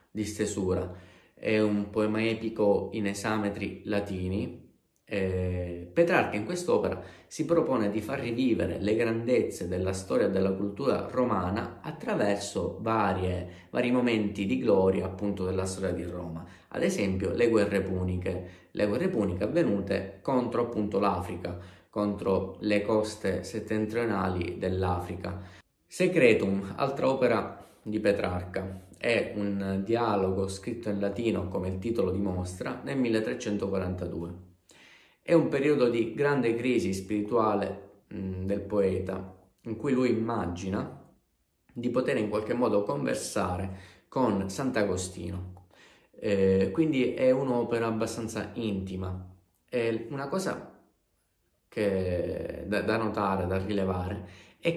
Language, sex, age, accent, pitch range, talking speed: Italian, male, 20-39, native, 95-115 Hz, 115 wpm